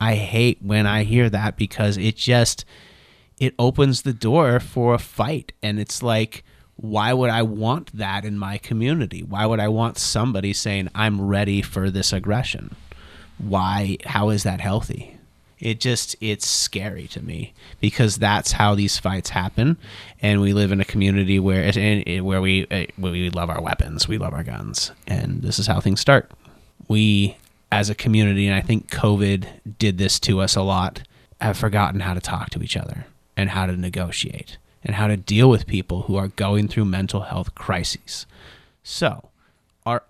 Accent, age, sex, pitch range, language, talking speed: American, 30-49, male, 95-115 Hz, English, 180 wpm